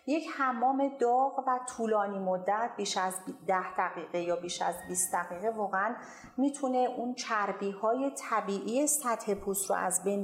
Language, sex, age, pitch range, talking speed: Persian, female, 40-59, 185-240 Hz, 150 wpm